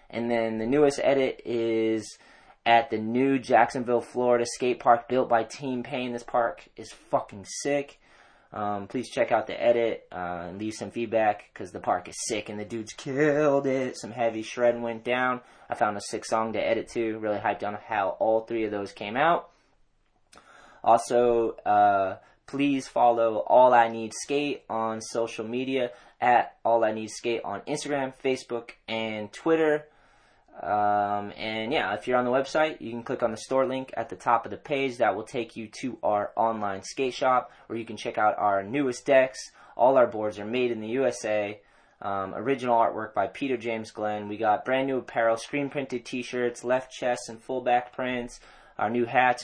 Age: 20-39